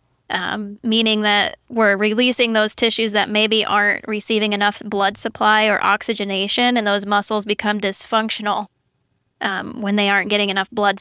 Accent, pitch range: American, 205-230 Hz